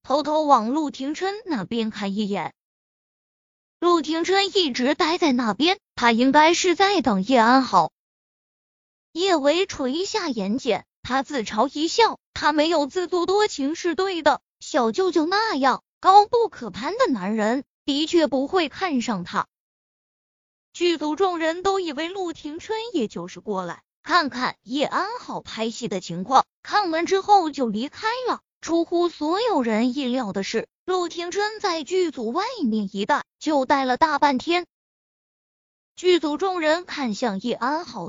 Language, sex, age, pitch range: Chinese, female, 20-39, 250-360 Hz